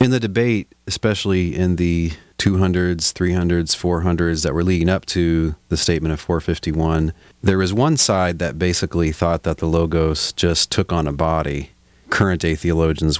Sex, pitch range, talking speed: male, 80-90 Hz, 160 wpm